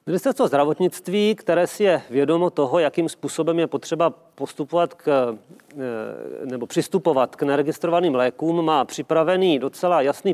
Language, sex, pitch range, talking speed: Czech, male, 145-165 Hz, 120 wpm